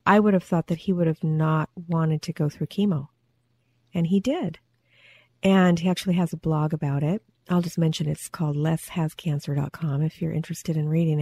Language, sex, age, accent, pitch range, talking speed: English, female, 40-59, American, 155-200 Hz, 195 wpm